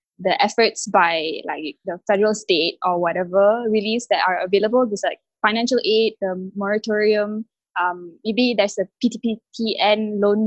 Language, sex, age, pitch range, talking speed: English, female, 10-29, 195-230 Hz, 145 wpm